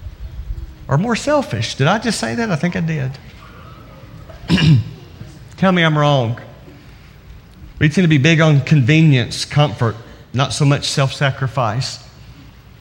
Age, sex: 40-59, male